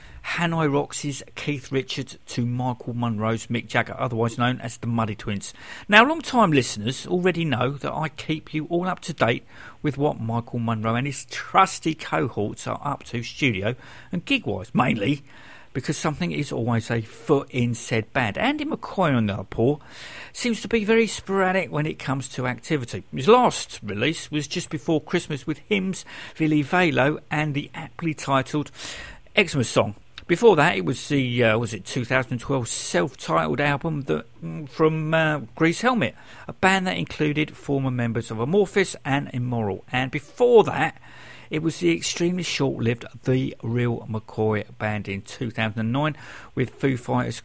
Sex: male